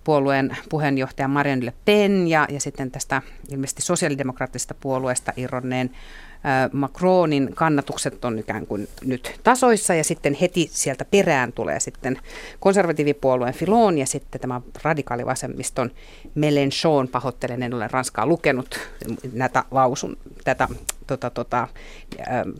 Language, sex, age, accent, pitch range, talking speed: Finnish, female, 50-69, native, 130-170 Hz, 120 wpm